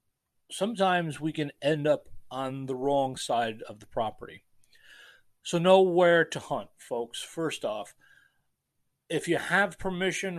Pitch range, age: 120-155 Hz, 40-59